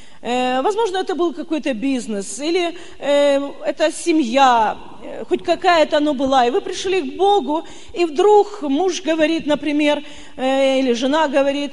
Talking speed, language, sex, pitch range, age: 140 wpm, Russian, female, 285-375 Hz, 40-59